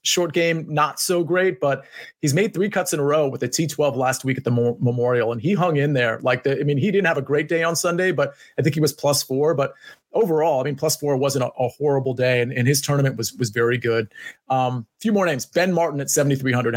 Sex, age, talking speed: male, 30-49, 265 wpm